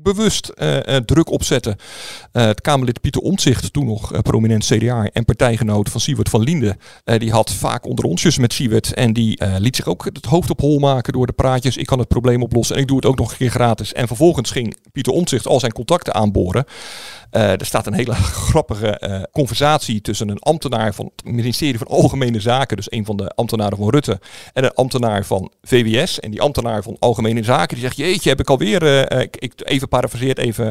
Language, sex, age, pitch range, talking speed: Dutch, male, 50-69, 115-145 Hz, 220 wpm